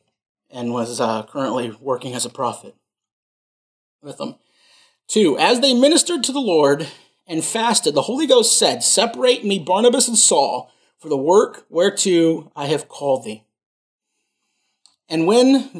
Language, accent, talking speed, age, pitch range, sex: English, American, 140 wpm, 30-49, 145-230 Hz, male